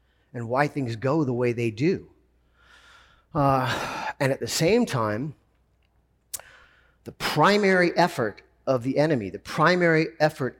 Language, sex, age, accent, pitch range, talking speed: English, male, 40-59, American, 115-145 Hz, 130 wpm